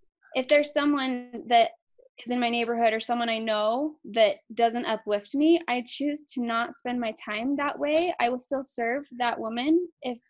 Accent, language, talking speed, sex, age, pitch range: American, English, 185 wpm, female, 10-29, 220-290 Hz